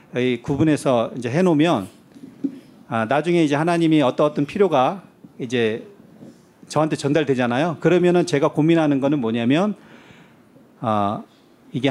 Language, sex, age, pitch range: Korean, male, 40-59, 125-165 Hz